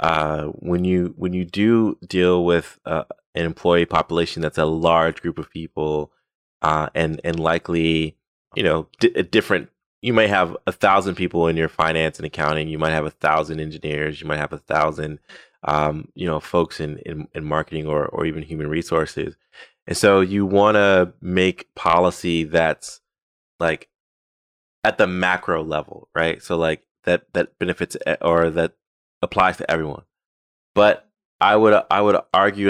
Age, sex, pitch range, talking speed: 20-39, male, 80-90 Hz, 170 wpm